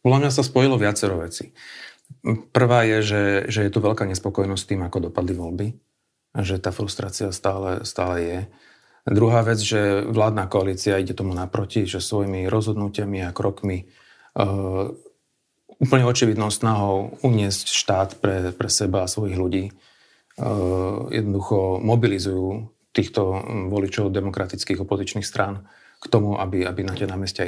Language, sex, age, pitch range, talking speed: Slovak, male, 40-59, 95-115 Hz, 140 wpm